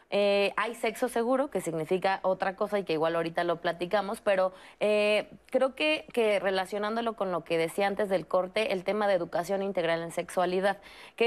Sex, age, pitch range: female, 20-39, 190-230 Hz